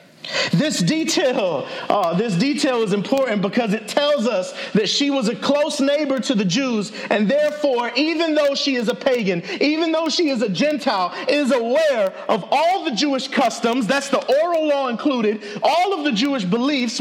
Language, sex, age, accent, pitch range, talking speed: English, male, 40-59, American, 230-300 Hz, 175 wpm